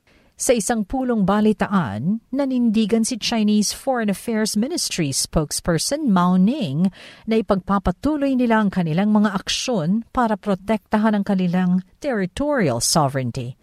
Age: 50-69